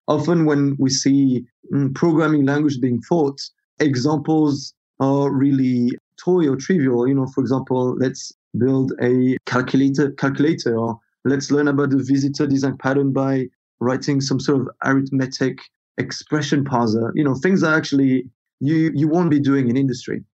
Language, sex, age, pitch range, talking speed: English, male, 30-49, 130-150 Hz, 150 wpm